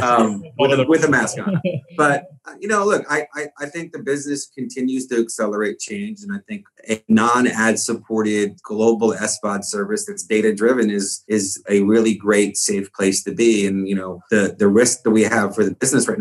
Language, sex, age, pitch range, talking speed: English, male, 30-49, 100-115 Hz, 205 wpm